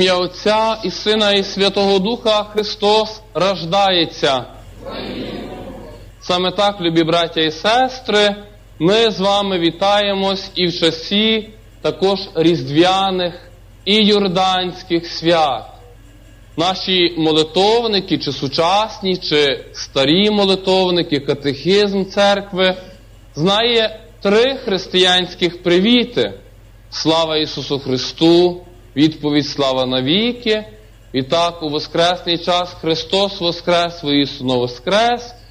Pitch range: 160-210 Hz